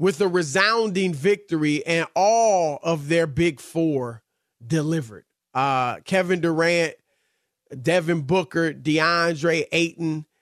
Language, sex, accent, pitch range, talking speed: English, male, American, 155-195 Hz, 105 wpm